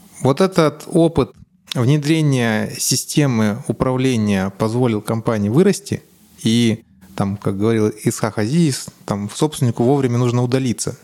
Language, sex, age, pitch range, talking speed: Russian, male, 20-39, 110-145 Hz, 110 wpm